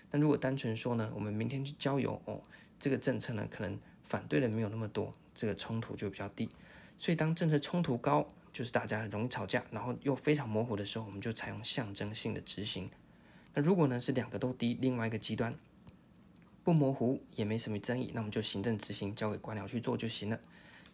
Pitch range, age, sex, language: 110-140 Hz, 20-39, male, Chinese